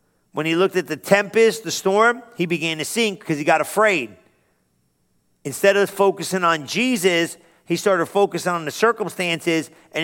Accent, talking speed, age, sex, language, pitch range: American, 165 wpm, 50-69, male, English, 160-205 Hz